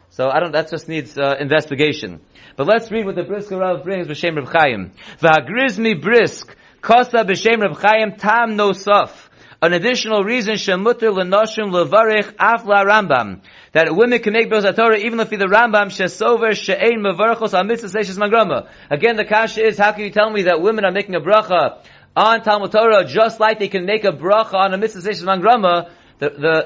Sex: male